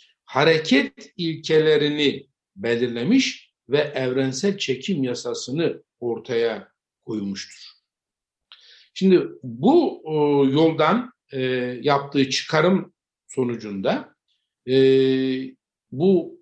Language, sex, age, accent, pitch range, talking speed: Turkish, male, 60-79, native, 130-205 Hz, 60 wpm